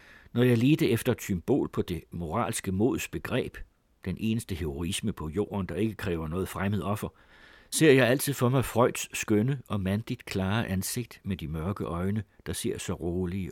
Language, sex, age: Danish, male, 60-79